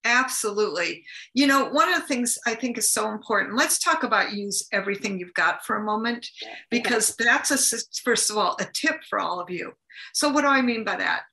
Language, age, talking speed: English, 50-69, 210 wpm